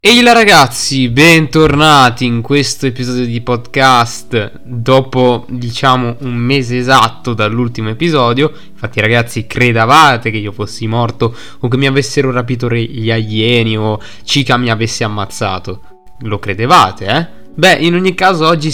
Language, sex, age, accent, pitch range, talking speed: Italian, male, 20-39, native, 115-145 Hz, 135 wpm